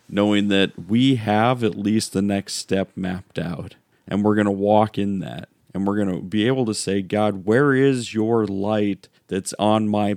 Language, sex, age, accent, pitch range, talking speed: English, male, 40-59, American, 100-125 Hz, 200 wpm